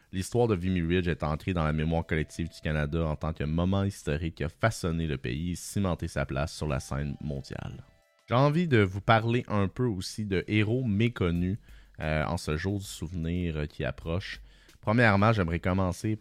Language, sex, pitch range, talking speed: French, male, 80-100 Hz, 195 wpm